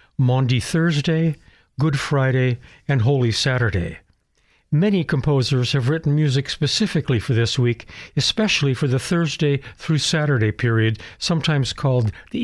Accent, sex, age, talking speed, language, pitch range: American, male, 60-79, 125 wpm, English, 120-155 Hz